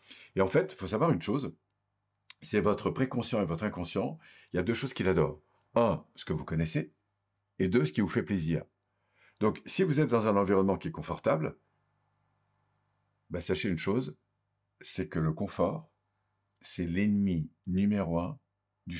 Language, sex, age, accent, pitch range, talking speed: French, male, 50-69, French, 95-110 Hz, 175 wpm